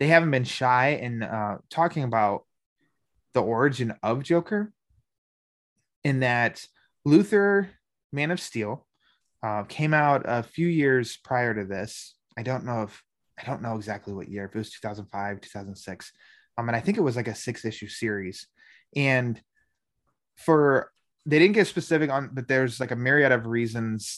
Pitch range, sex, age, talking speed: 105-130 Hz, male, 20-39, 165 wpm